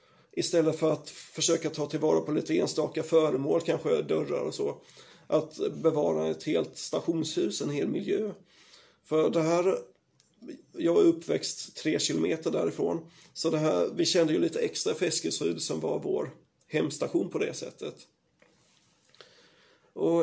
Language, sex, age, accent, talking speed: Swedish, male, 30-49, native, 140 wpm